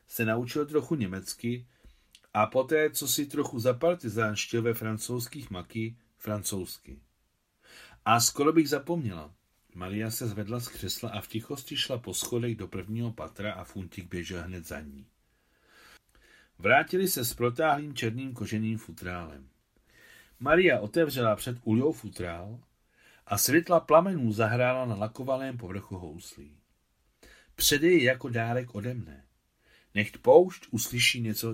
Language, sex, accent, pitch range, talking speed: Czech, male, native, 100-130 Hz, 125 wpm